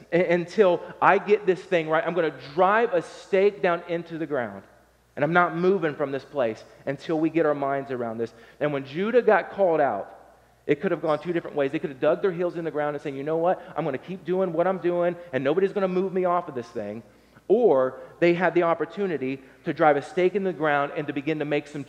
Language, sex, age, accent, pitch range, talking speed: English, male, 30-49, American, 145-190 Hz, 245 wpm